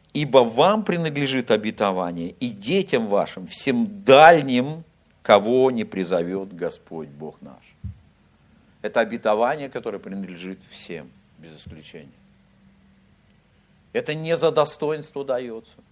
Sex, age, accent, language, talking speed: male, 50-69, native, Russian, 100 wpm